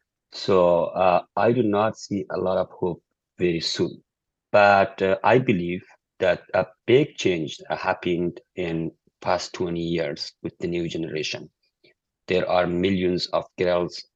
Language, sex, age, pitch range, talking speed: English, male, 50-69, 85-95 Hz, 145 wpm